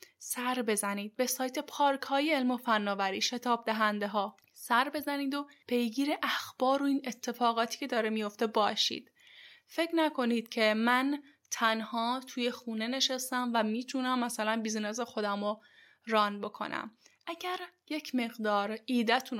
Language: Persian